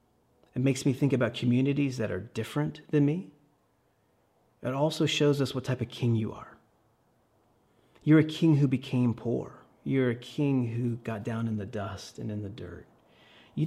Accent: American